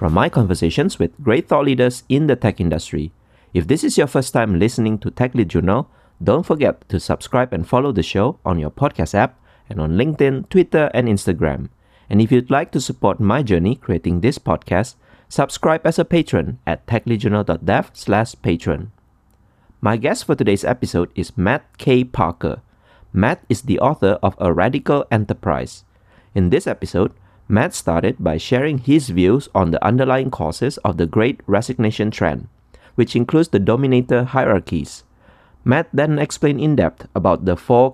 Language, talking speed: English, 170 wpm